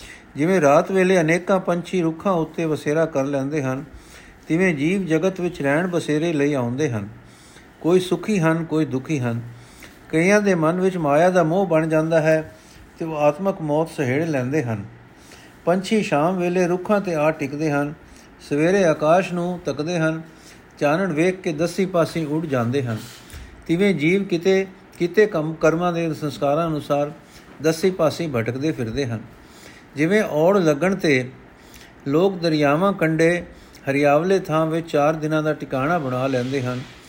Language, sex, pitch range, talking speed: Punjabi, male, 140-175 Hz, 150 wpm